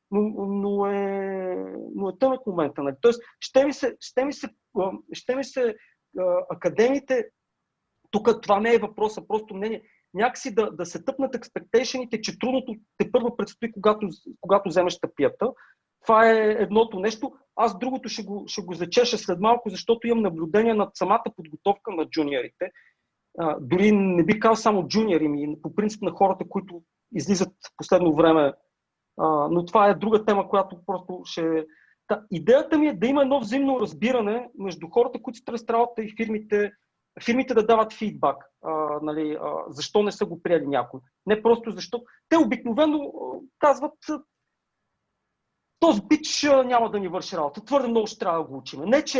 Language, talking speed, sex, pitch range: Bulgarian, 165 wpm, male, 185-245 Hz